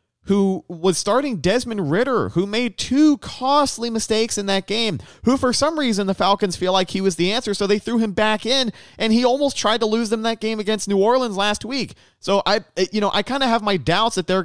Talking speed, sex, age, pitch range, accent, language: 235 wpm, male, 30-49, 140-205 Hz, American, English